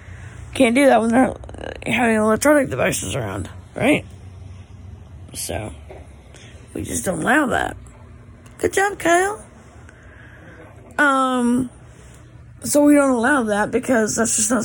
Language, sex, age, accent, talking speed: English, female, 20-39, American, 120 wpm